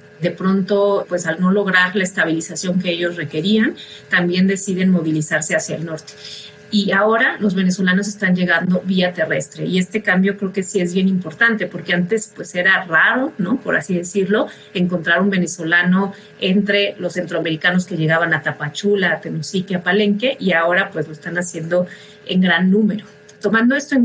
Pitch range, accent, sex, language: 175-200 Hz, Mexican, female, Spanish